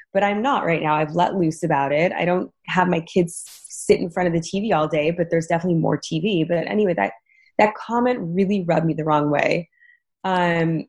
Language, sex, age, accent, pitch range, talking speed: English, female, 20-39, American, 165-210 Hz, 220 wpm